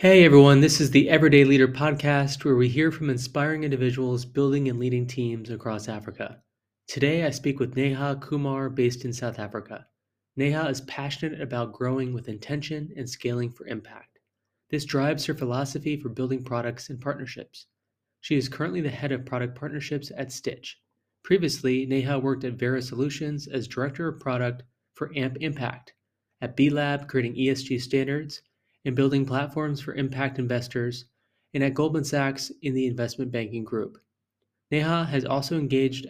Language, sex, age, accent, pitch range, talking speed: English, male, 20-39, American, 125-140 Hz, 165 wpm